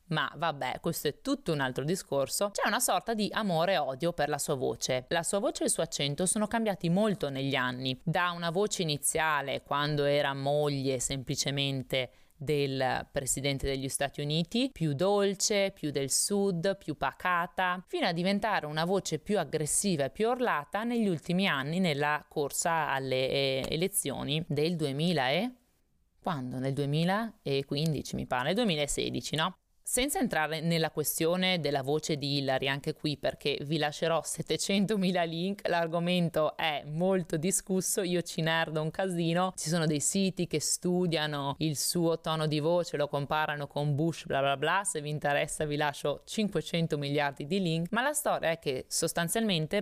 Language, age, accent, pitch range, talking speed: Italian, 20-39, native, 145-190 Hz, 165 wpm